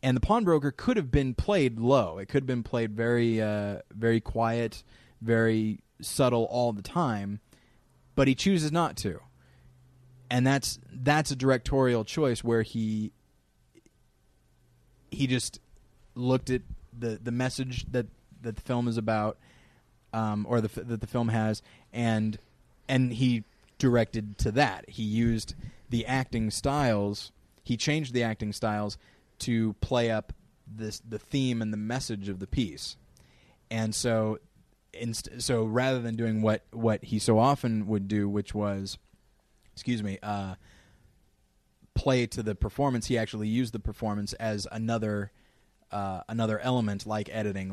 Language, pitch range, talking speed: English, 105-125 Hz, 150 wpm